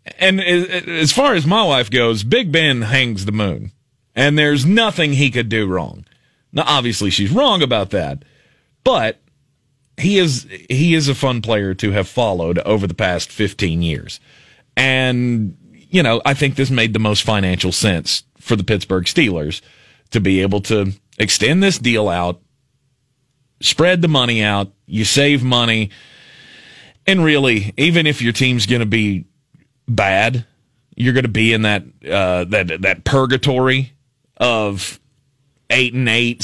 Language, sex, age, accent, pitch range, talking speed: English, male, 30-49, American, 110-140 Hz, 155 wpm